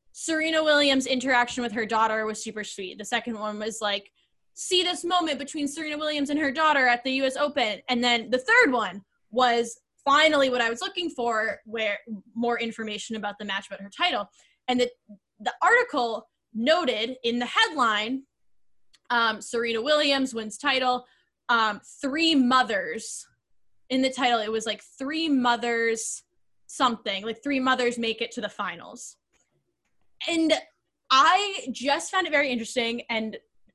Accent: American